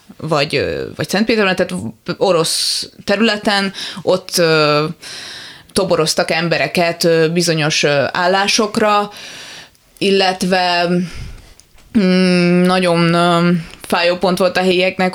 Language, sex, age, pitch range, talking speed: Hungarian, female, 20-39, 170-195 Hz, 90 wpm